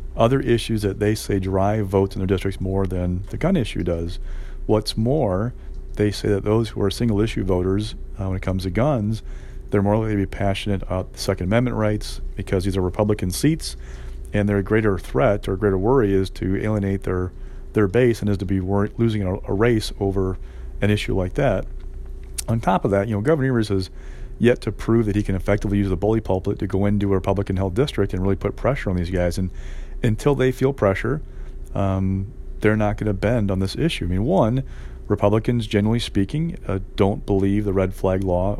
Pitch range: 95-110 Hz